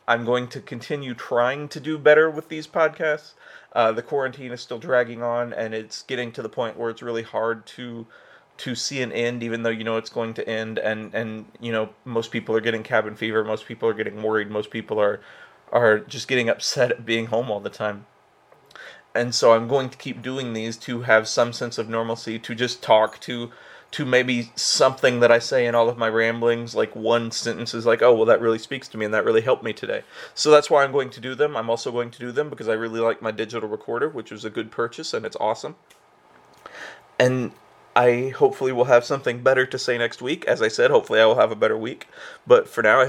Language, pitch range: English, 115-150 Hz